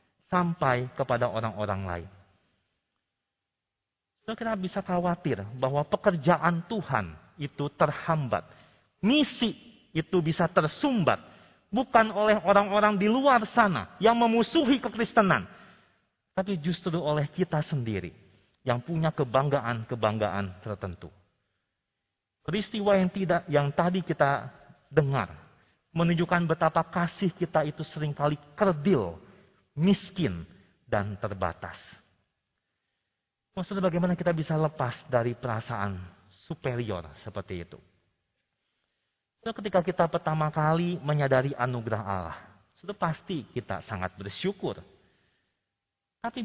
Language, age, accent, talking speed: Indonesian, 40-59, native, 95 wpm